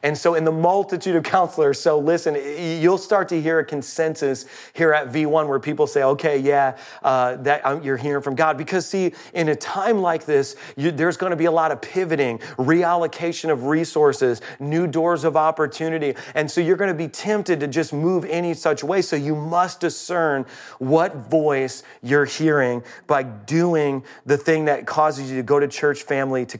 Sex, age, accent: male, 30-49, American